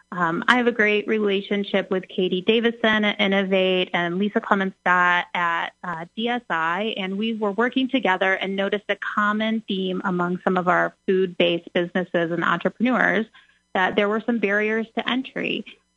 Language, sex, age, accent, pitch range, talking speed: English, female, 30-49, American, 180-225 Hz, 160 wpm